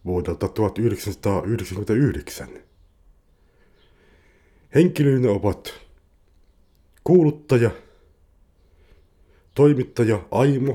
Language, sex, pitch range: Finnish, male, 75-105 Hz